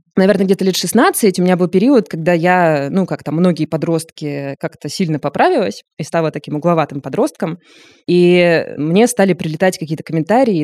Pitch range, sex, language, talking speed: 150-185 Hz, female, Russian, 160 wpm